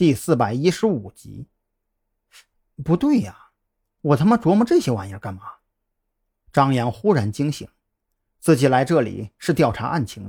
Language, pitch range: Chinese, 110-160 Hz